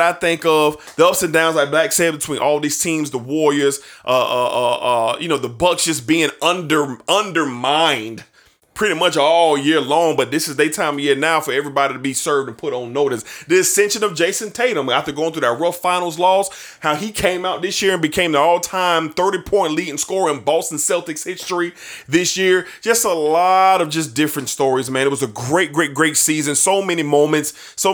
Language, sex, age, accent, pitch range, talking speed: English, male, 30-49, American, 135-170 Hz, 215 wpm